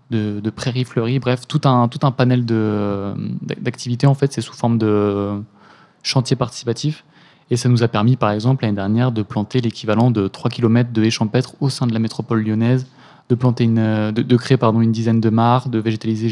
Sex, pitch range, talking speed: male, 115-130 Hz, 205 wpm